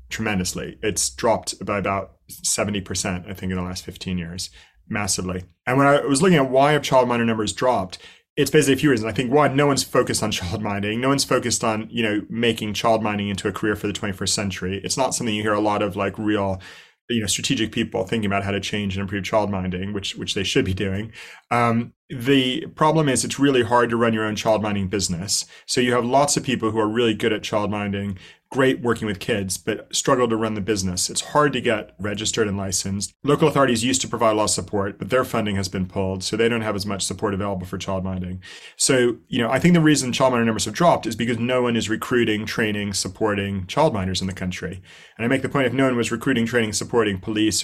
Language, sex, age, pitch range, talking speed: English, male, 30-49, 100-125 Hz, 235 wpm